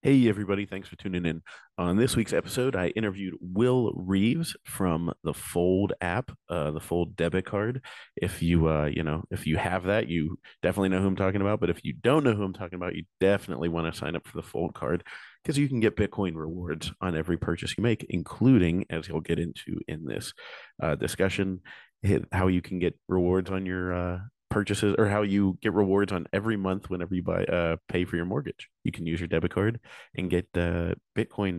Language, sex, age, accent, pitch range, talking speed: English, male, 30-49, American, 85-100 Hz, 215 wpm